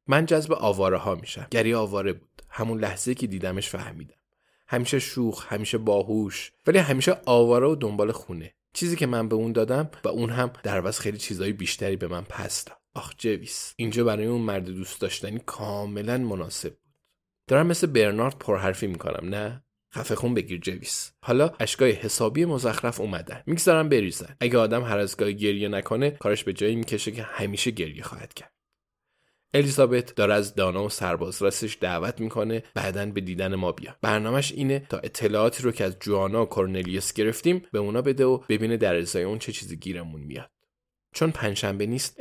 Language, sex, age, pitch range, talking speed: Persian, male, 20-39, 100-125 Hz, 175 wpm